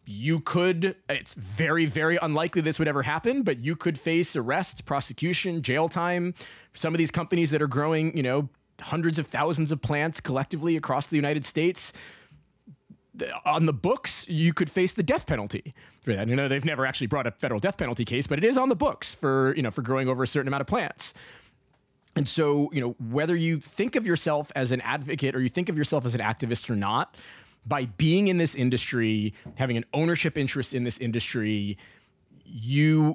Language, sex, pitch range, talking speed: English, male, 125-165 Hz, 195 wpm